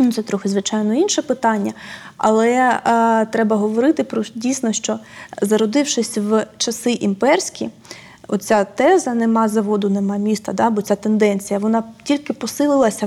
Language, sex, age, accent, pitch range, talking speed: Ukrainian, female, 20-39, native, 210-245 Hz, 140 wpm